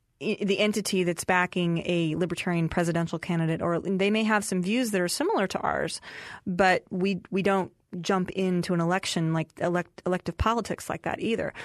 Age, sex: 30-49, female